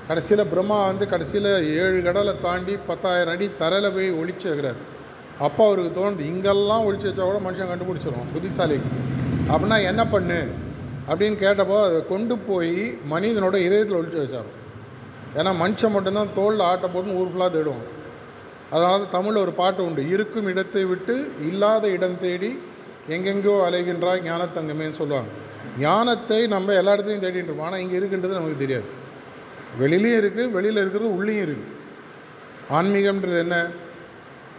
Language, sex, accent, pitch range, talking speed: Tamil, male, native, 170-205 Hz, 130 wpm